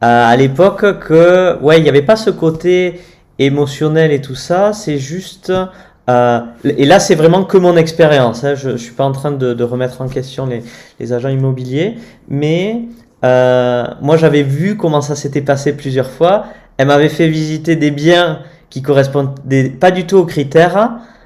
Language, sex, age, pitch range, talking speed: French, male, 20-39, 130-170 Hz, 185 wpm